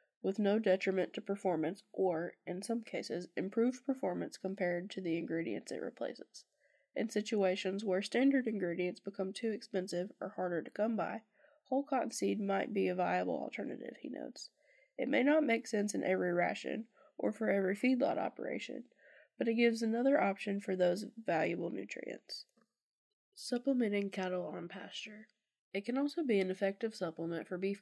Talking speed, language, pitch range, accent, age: 160 wpm, English, 185-235 Hz, American, 10-29